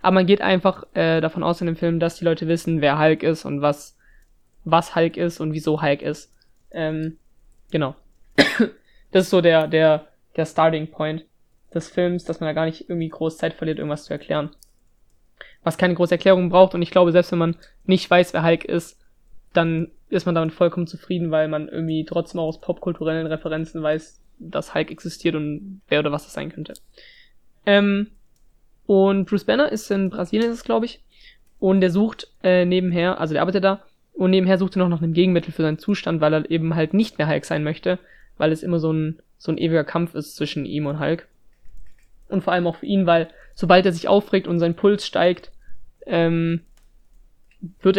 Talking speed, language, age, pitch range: 205 wpm, German, 20-39, 160-185 Hz